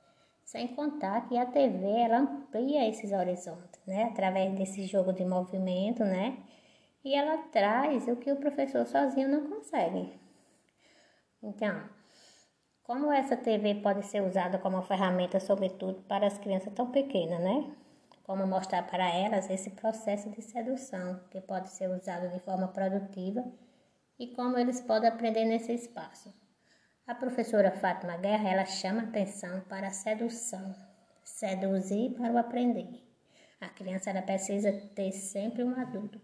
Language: Portuguese